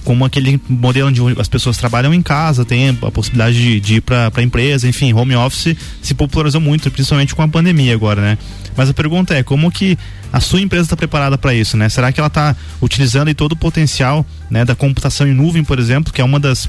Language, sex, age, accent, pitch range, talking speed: Portuguese, male, 20-39, Brazilian, 125-150 Hz, 225 wpm